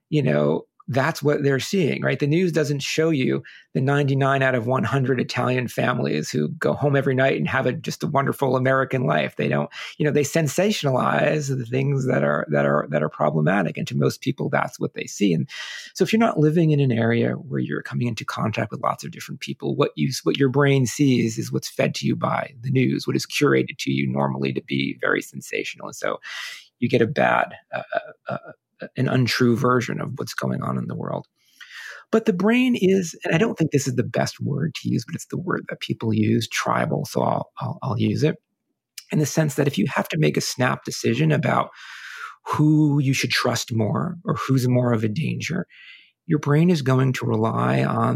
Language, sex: English, male